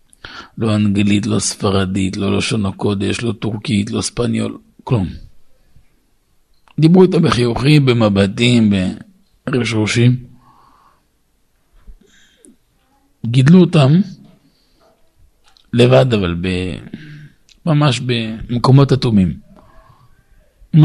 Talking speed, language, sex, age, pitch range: 75 wpm, Hebrew, male, 50-69, 100-140 Hz